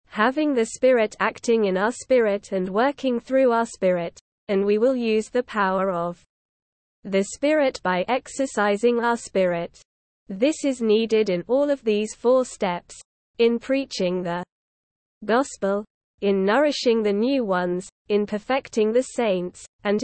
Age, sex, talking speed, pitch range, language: 20-39, female, 145 wpm, 195-245 Hz, Filipino